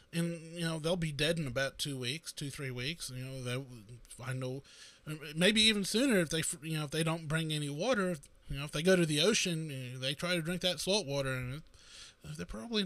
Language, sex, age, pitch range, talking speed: English, male, 20-39, 135-215 Hz, 230 wpm